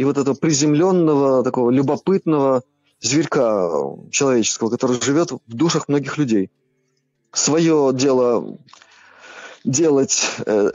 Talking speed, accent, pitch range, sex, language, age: 95 wpm, native, 130-165 Hz, male, Russian, 20-39